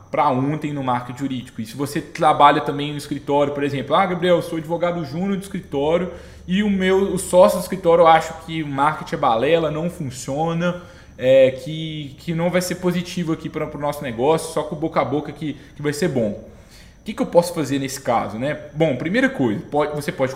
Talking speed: 220 wpm